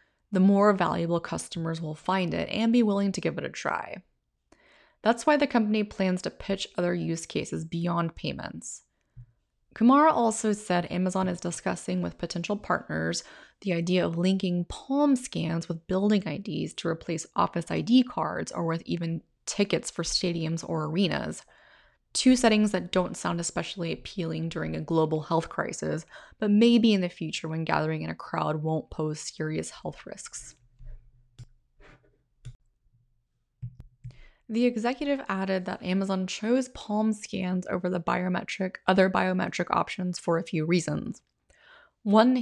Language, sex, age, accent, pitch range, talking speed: English, female, 20-39, American, 160-205 Hz, 145 wpm